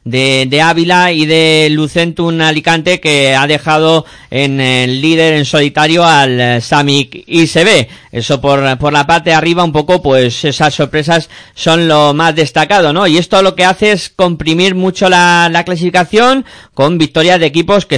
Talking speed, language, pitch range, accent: 175 wpm, Spanish, 140-170 Hz, Spanish